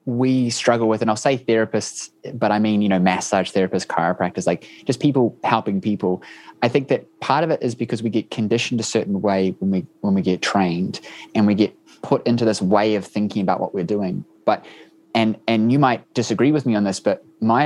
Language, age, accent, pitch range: English, 20-39, Australian, 100-125 Hz